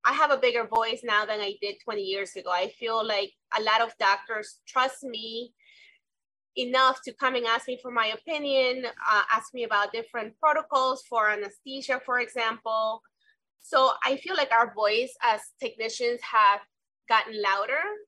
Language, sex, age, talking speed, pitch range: English, female, 20-39, 170 wpm, 215-275 Hz